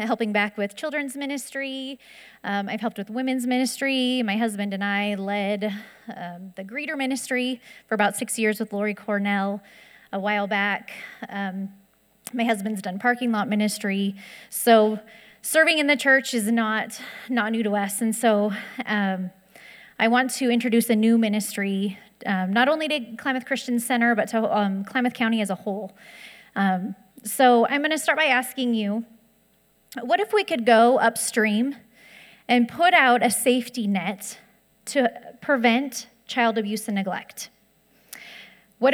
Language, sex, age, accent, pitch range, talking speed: English, female, 30-49, American, 205-250 Hz, 155 wpm